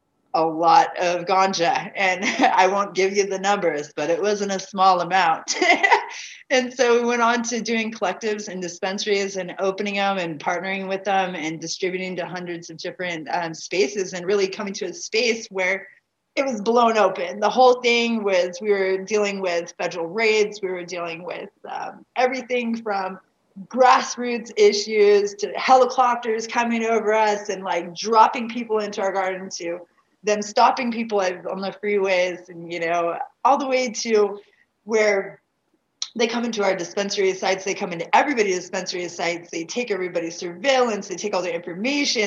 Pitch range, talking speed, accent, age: 180-230 Hz, 170 wpm, American, 30-49